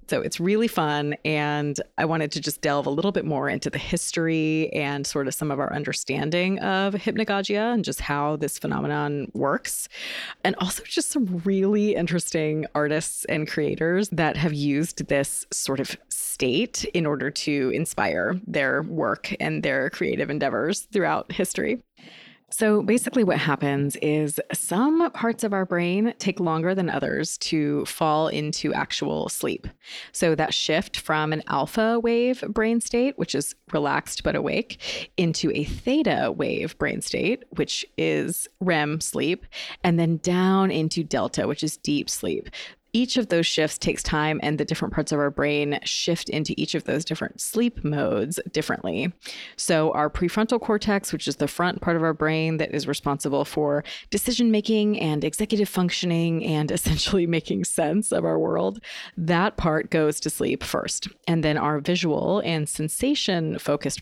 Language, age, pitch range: English, 20-39, 150-200 Hz